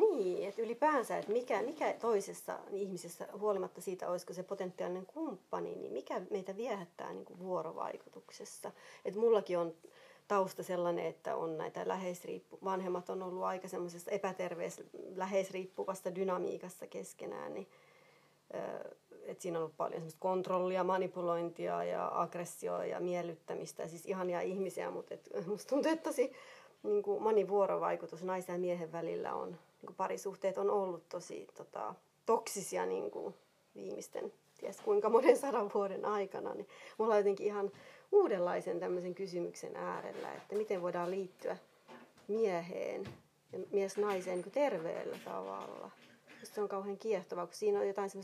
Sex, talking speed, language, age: female, 135 wpm, Finnish, 30-49